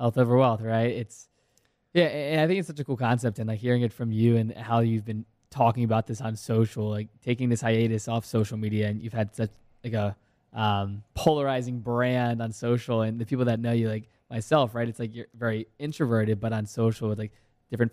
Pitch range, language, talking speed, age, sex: 110-125 Hz, English, 225 wpm, 20-39, male